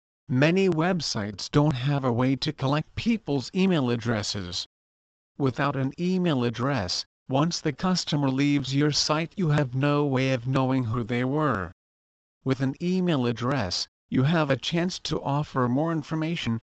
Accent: American